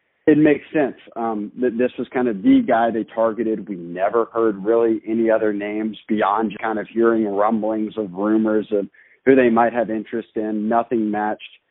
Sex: male